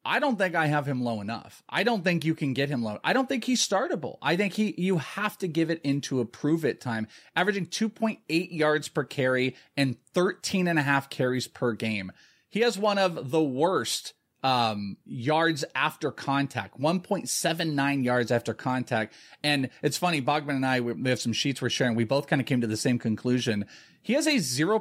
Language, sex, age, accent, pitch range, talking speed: English, male, 30-49, American, 125-170 Hz, 210 wpm